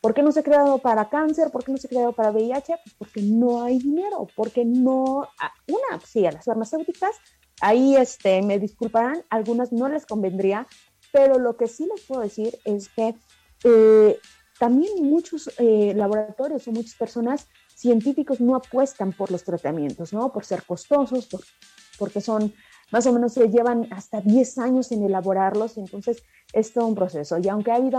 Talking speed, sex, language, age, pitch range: 180 wpm, female, Spanish, 30-49, 215-290 Hz